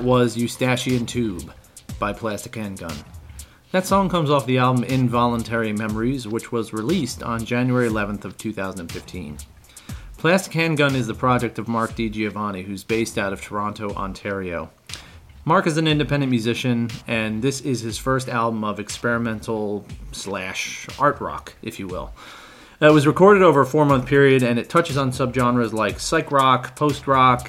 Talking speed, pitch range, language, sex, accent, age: 155 wpm, 110-140 Hz, English, male, American, 30-49